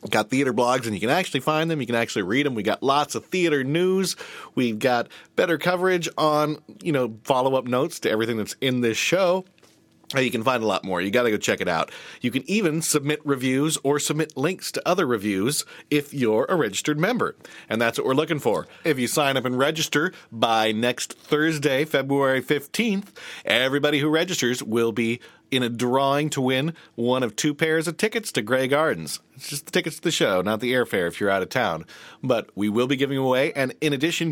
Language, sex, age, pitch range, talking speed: English, male, 40-59, 120-155 Hz, 220 wpm